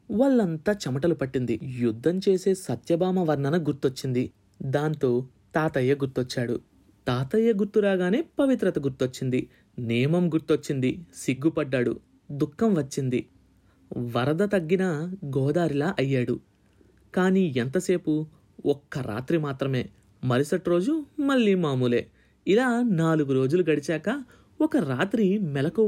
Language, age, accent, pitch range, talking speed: Telugu, 30-49, native, 130-190 Hz, 95 wpm